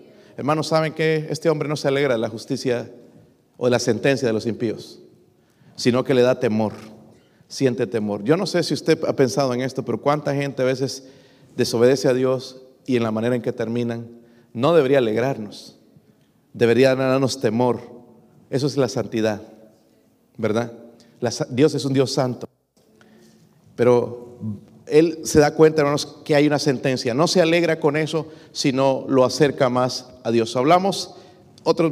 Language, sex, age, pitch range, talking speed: Spanish, male, 40-59, 120-150 Hz, 165 wpm